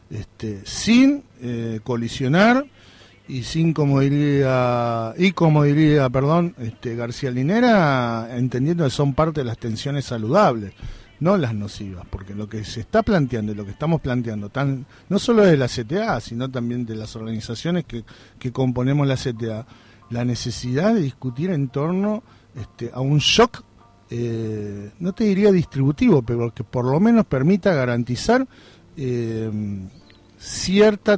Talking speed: 150 wpm